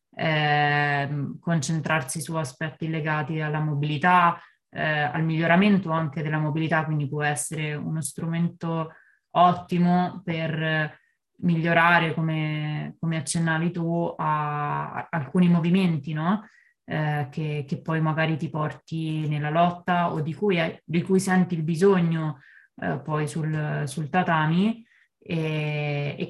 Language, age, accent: Italian, 20-39, native